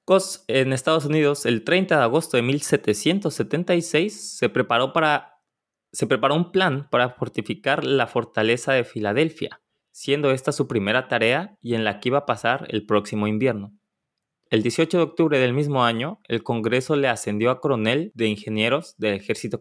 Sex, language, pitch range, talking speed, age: male, Spanish, 110-140 Hz, 170 wpm, 20-39